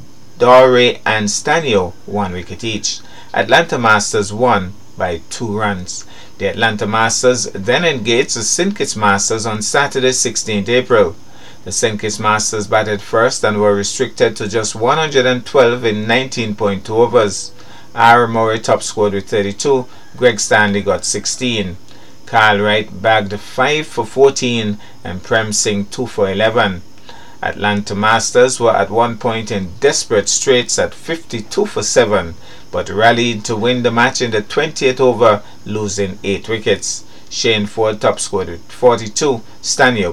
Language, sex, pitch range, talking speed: English, male, 105-125 Hz, 140 wpm